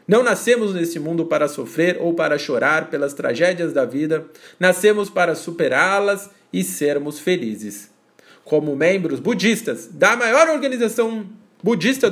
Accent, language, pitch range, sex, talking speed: Brazilian, Portuguese, 150-205 Hz, male, 130 wpm